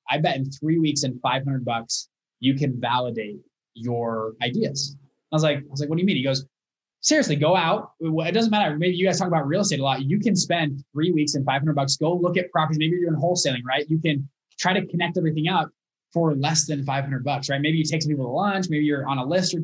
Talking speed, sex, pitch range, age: 255 wpm, male, 140-170 Hz, 20-39